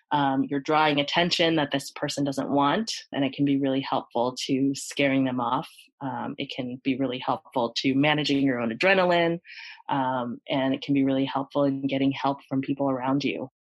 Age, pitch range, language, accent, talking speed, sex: 20-39, 135-150 Hz, English, American, 195 wpm, female